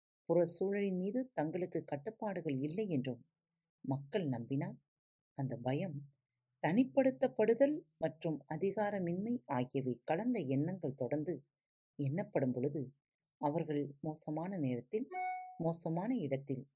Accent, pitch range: native, 140-220 Hz